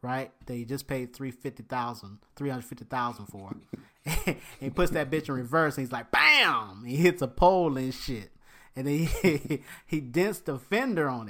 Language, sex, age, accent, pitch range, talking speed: English, male, 30-49, American, 140-220 Hz, 195 wpm